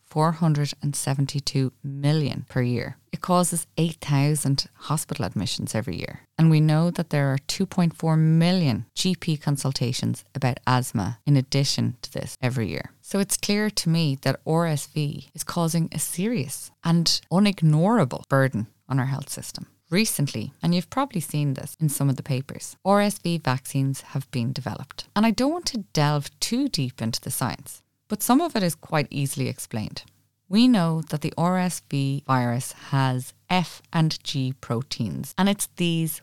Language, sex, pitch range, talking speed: English, female, 130-170 Hz, 160 wpm